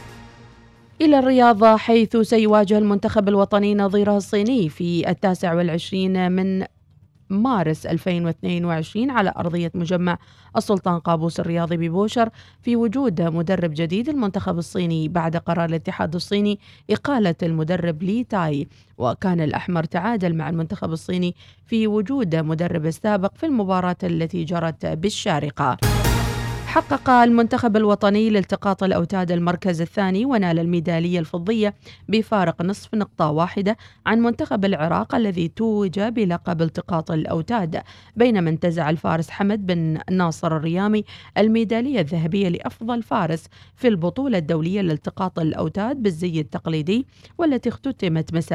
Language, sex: Arabic, female